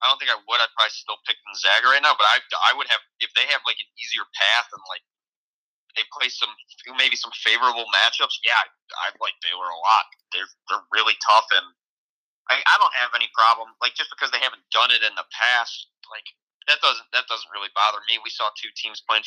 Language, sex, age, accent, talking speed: English, male, 30-49, American, 230 wpm